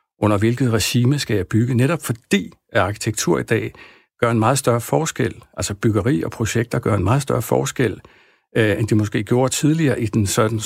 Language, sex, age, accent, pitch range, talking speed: Danish, male, 60-79, native, 105-130 Hz, 190 wpm